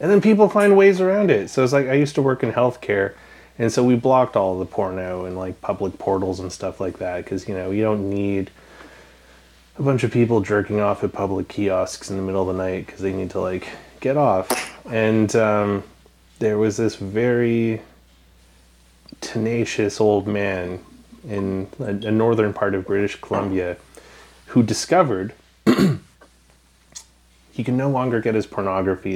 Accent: American